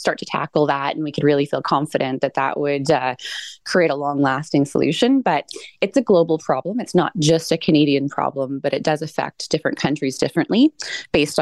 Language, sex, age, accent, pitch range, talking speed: English, female, 20-39, American, 140-165 Hz, 200 wpm